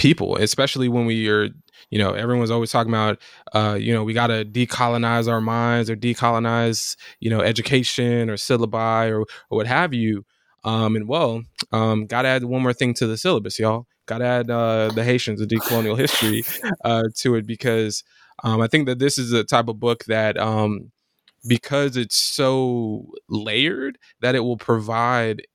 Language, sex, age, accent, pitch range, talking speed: English, male, 20-39, American, 110-125 Hz, 185 wpm